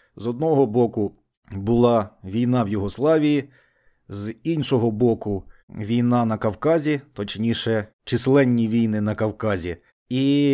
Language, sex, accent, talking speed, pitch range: Ukrainian, male, native, 110 wpm, 110-145 Hz